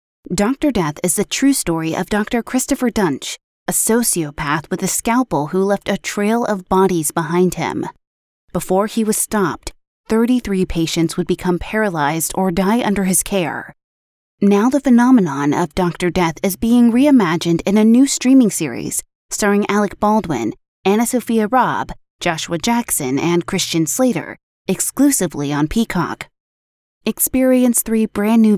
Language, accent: English, American